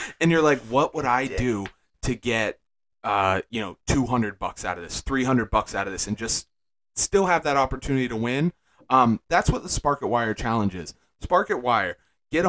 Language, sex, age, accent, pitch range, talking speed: English, male, 30-49, American, 110-135 Hz, 205 wpm